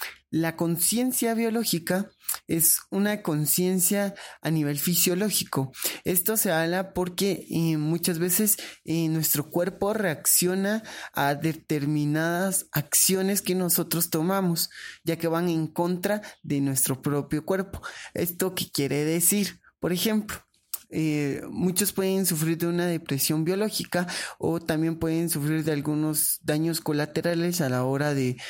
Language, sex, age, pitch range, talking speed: Spanish, male, 20-39, 145-180 Hz, 130 wpm